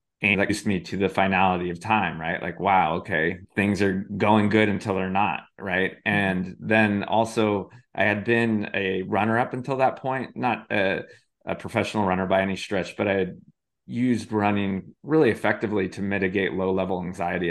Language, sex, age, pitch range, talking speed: English, male, 20-39, 95-110 Hz, 180 wpm